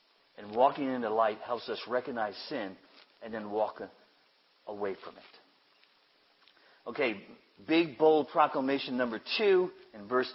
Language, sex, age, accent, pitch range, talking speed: English, male, 60-79, American, 95-140 Hz, 135 wpm